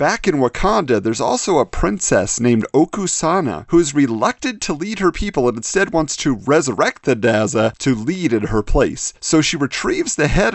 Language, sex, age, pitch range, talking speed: English, male, 40-59, 115-170 Hz, 190 wpm